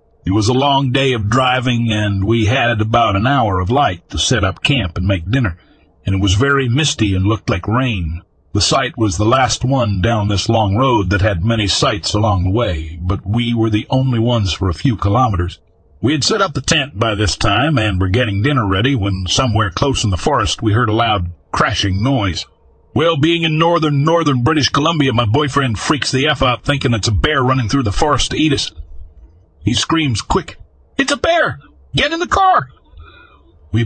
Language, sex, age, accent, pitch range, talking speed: English, male, 50-69, American, 95-130 Hz, 210 wpm